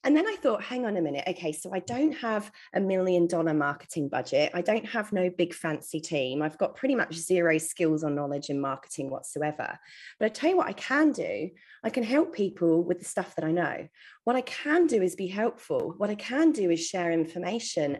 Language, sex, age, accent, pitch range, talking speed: English, female, 30-49, British, 160-210 Hz, 225 wpm